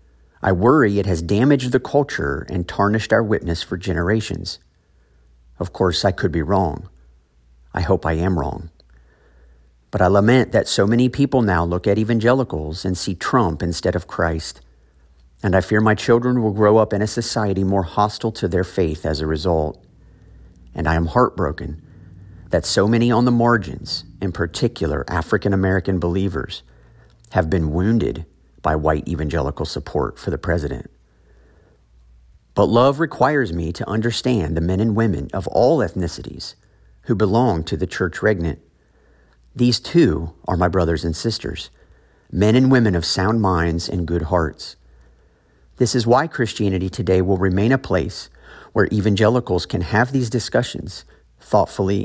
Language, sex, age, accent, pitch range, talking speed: English, male, 50-69, American, 80-110 Hz, 155 wpm